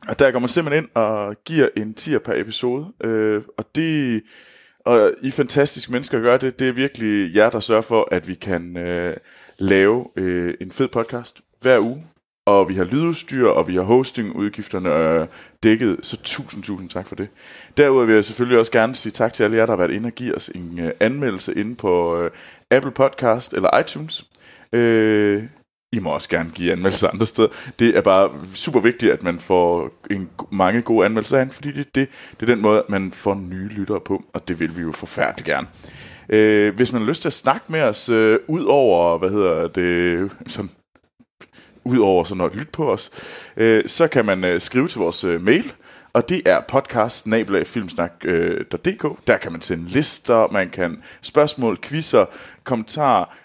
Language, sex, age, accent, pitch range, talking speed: Danish, male, 20-39, native, 95-125 Hz, 190 wpm